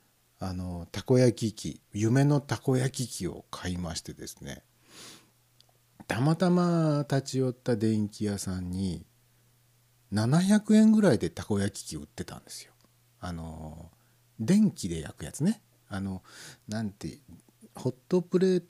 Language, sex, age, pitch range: Japanese, male, 60-79, 105-155 Hz